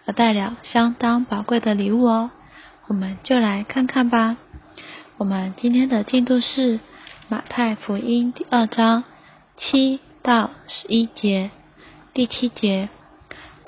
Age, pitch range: 10-29, 210-245 Hz